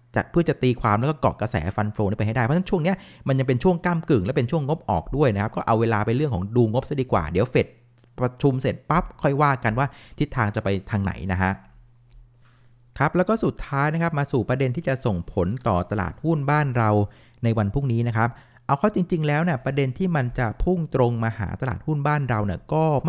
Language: Thai